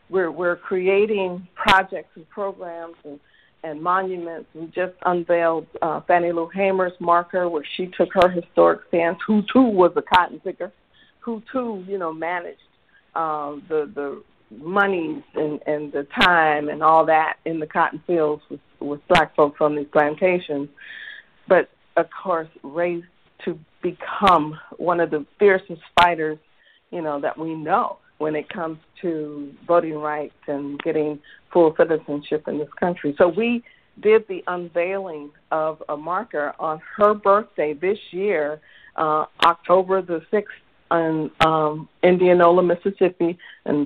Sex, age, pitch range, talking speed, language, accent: female, 50-69, 155-185 Hz, 145 wpm, English, American